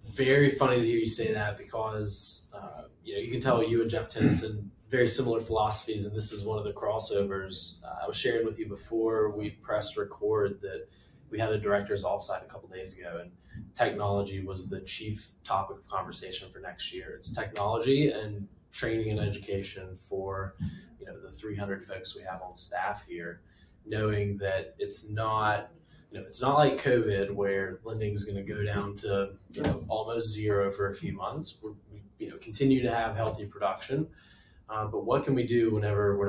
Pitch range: 100-115 Hz